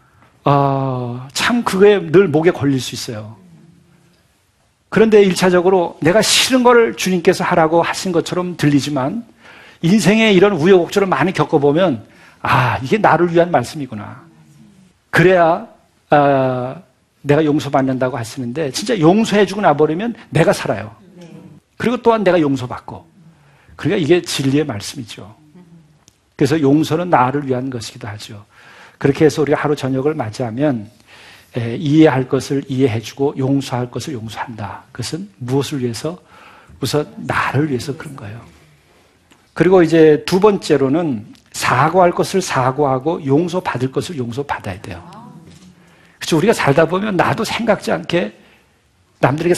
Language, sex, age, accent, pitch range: Korean, male, 50-69, native, 130-180 Hz